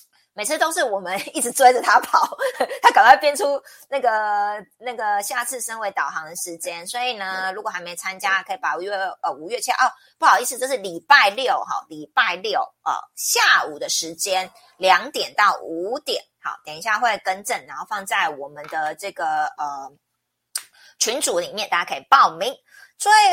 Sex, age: female, 30-49